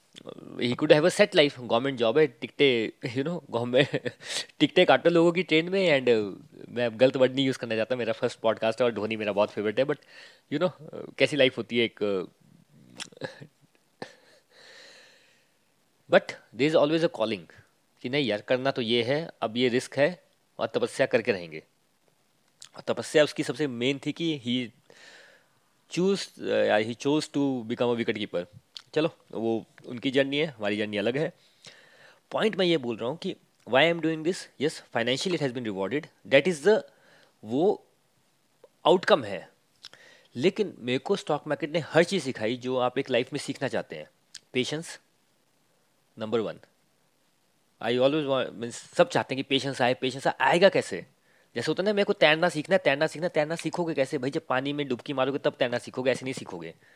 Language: Hindi